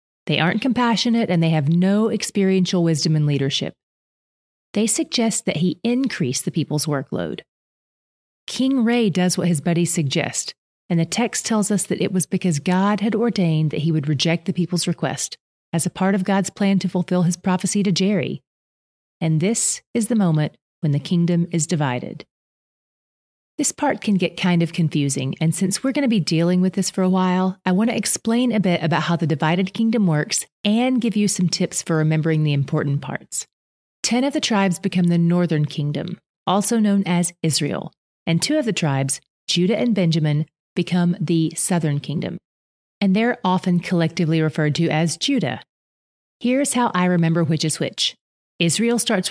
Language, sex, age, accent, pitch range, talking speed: English, female, 30-49, American, 160-205 Hz, 180 wpm